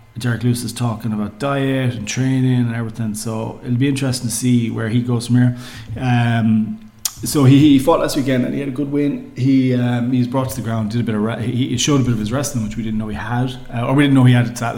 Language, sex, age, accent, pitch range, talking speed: English, male, 30-49, Irish, 110-125 Hz, 275 wpm